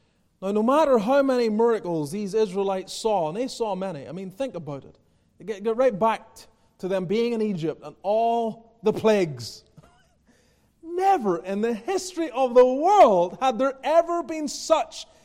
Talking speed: 170 wpm